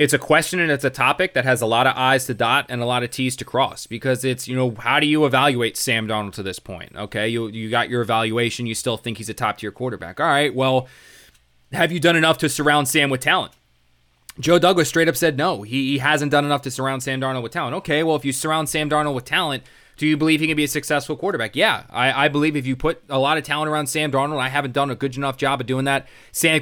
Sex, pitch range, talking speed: male, 125-155 Hz, 270 wpm